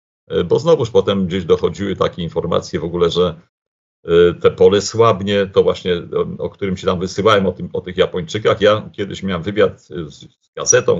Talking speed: 170 wpm